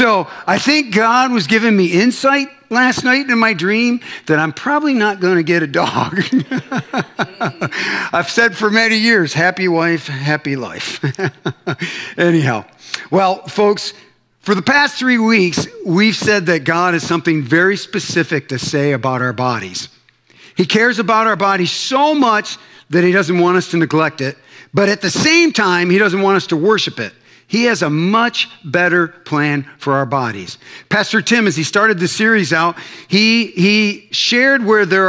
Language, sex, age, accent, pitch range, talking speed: English, male, 50-69, American, 165-215 Hz, 175 wpm